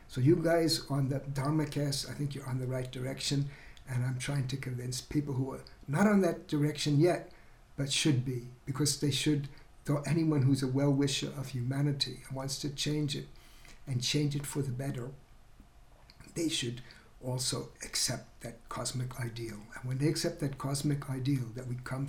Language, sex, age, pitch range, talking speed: English, male, 60-79, 125-145 Hz, 185 wpm